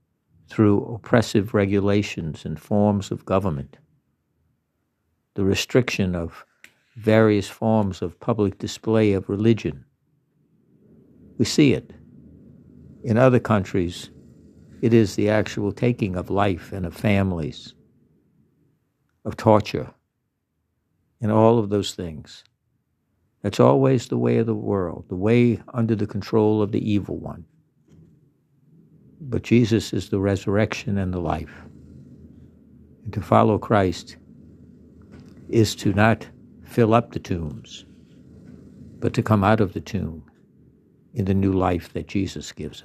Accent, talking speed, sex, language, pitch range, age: American, 125 wpm, male, English, 95-115 Hz, 60-79